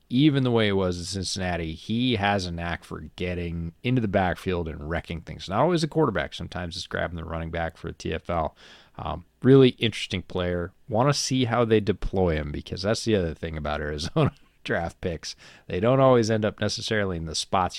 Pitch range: 85-115 Hz